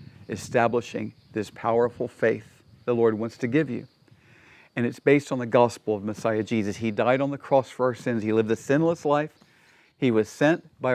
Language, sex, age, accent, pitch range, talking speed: English, male, 40-59, American, 120-145 Hz, 195 wpm